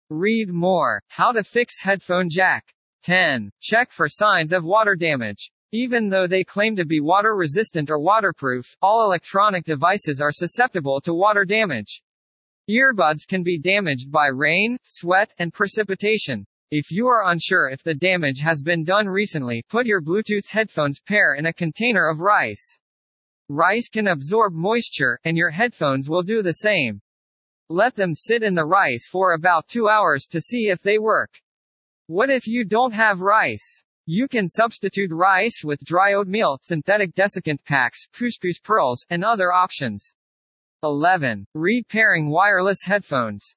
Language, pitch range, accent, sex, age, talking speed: English, 155-215 Hz, American, male, 40-59, 155 wpm